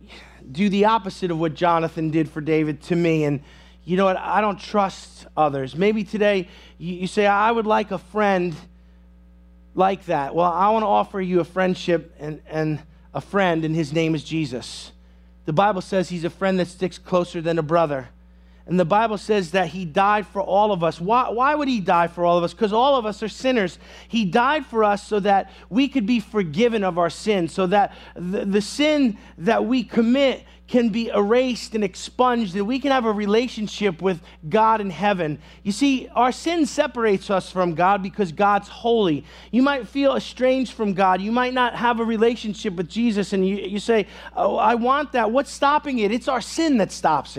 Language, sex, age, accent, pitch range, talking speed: English, male, 30-49, American, 170-225 Hz, 205 wpm